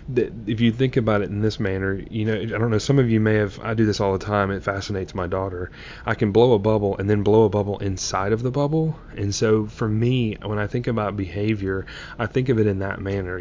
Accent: American